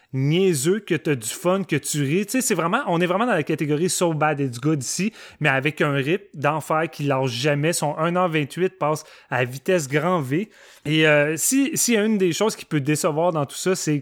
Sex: male